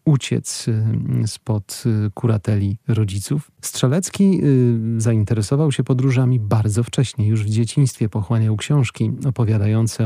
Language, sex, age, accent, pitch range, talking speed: Polish, male, 40-59, native, 110-135 Hz, 95 wpm